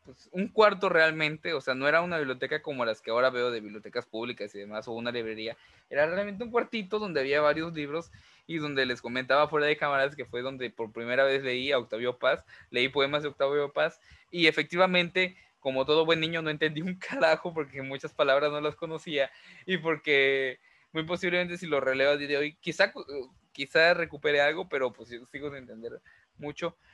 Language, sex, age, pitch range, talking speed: Spanish, male, 20-39, 125-160 Hz, 205 wpm